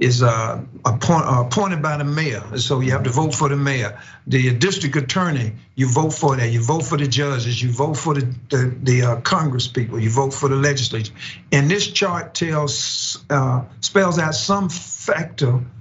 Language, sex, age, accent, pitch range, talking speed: English, male, 50-69, American, 125-155 Hz, 180 wpm